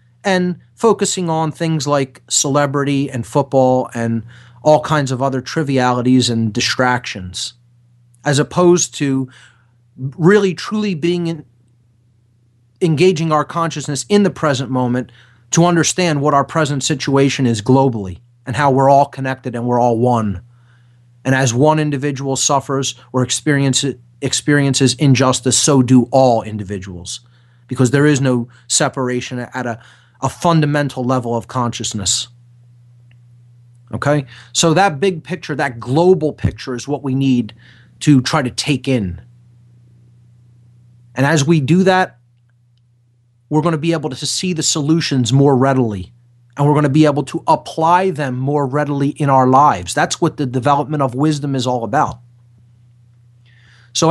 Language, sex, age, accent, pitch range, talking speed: English, male, 30-49, American, 120-150 Hz, 145 wpm